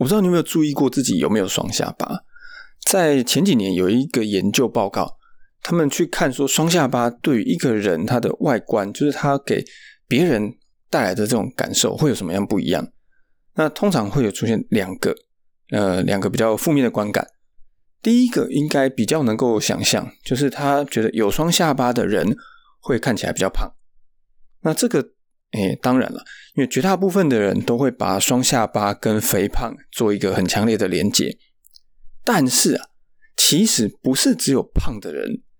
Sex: male